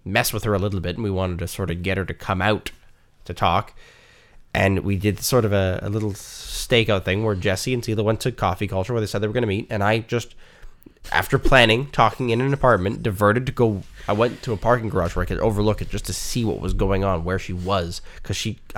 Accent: American